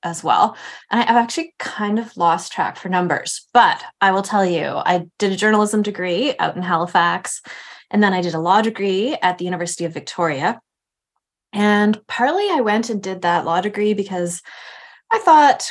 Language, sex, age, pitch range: English, female, 20-39, 175-250 Hz